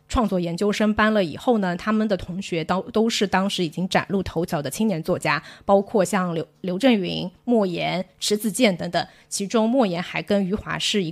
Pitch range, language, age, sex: 175-220 Hz, Chinese, 20-39, female